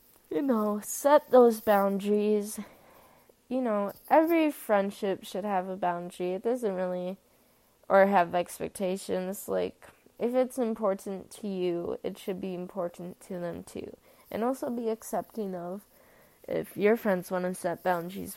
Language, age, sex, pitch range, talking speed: English, 20-39, female, 190-245 Hz, 145 wpm